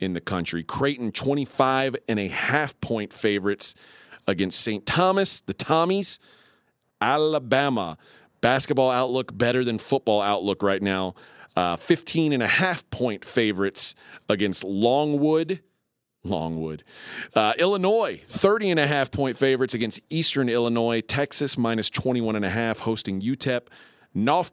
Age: 40-59